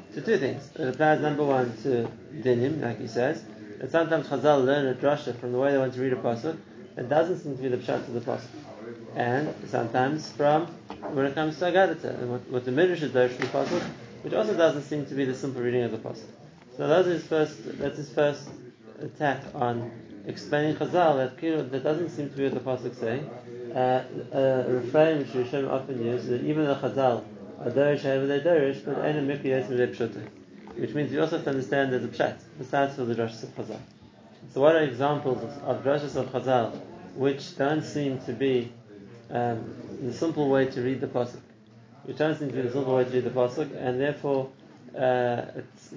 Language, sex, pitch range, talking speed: English, male, 125-150 Hz, 195 wpm